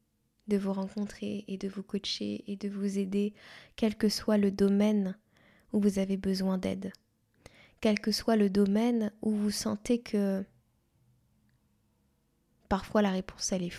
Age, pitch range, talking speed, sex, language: 20-39, 200-235 Hz, 150 wpm, female, French